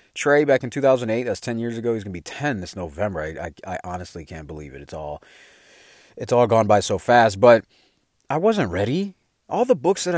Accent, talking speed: American, 225 wpm